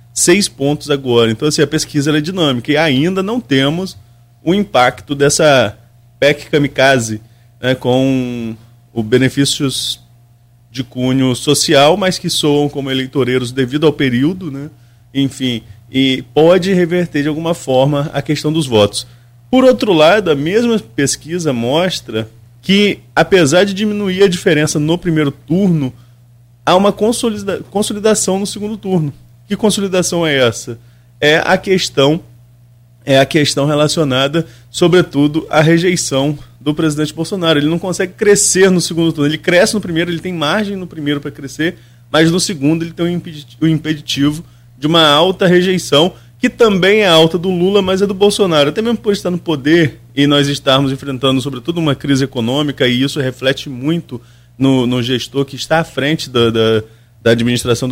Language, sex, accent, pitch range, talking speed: Portuguese, male, Brazilian, 125-175 Hz, 155 wpm